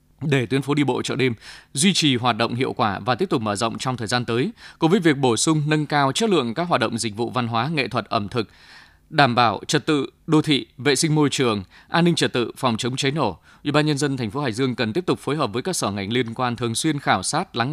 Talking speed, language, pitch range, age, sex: 285 wpm, Vietnamese, 120-150 Hz, 20-39, male